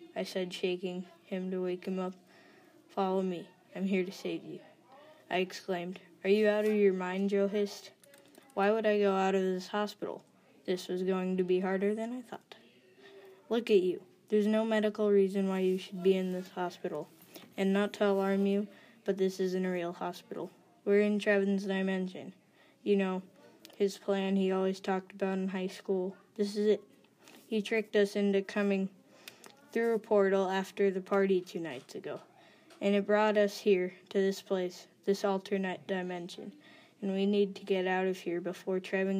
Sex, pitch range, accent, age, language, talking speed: female, 185-205 Hz, American, 20-39, English, 185 wpm